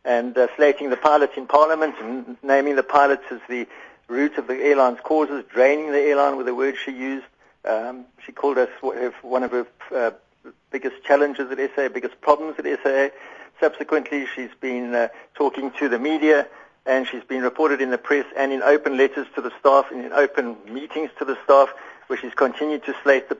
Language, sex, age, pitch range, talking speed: English, male, 60-79, 130-150 Hz, 195 wpm